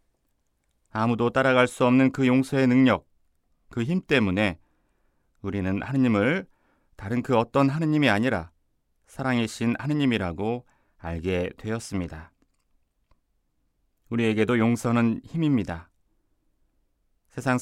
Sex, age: male, 30-49